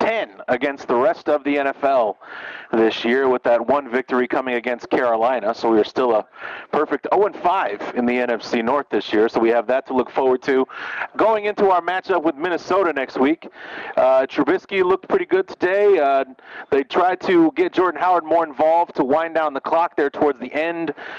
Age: 30-49